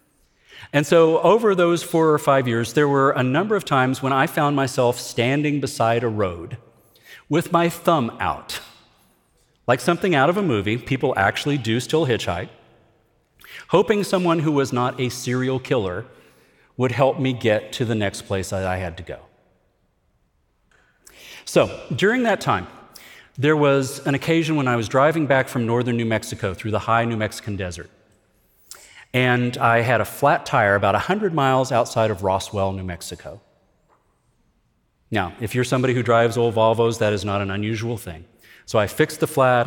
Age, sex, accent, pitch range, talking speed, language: 40-59, male, American, 110-145 Hz, 170 wpm, English